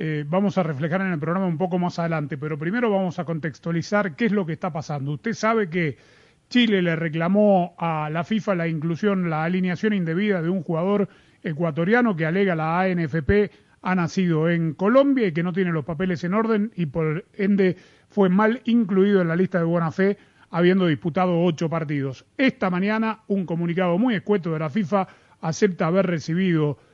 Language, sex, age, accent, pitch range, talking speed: Spanish, male, 30-49, Argentinian, 165-215 Hz, 185 wpm